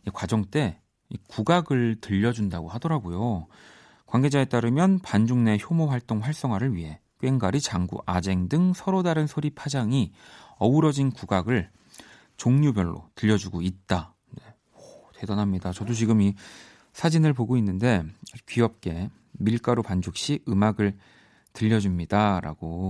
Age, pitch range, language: 40-59, 95-140 Hz, Korean